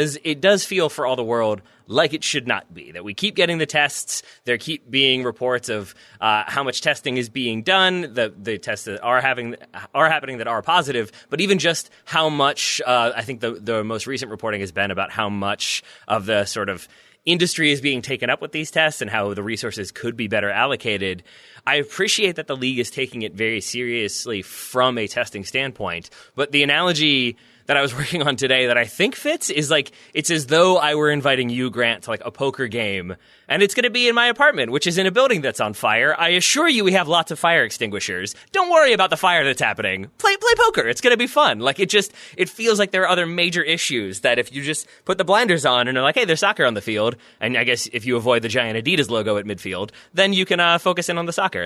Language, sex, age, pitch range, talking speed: English, male, 20-39, 120-180 Hz, 245 wpm